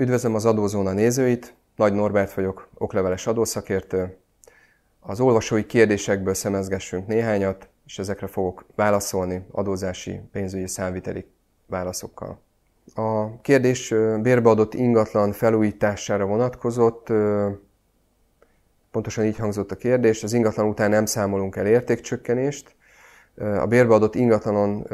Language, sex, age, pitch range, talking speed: Hungarian, male, 30-49, 95-110 Hz, 105 wpm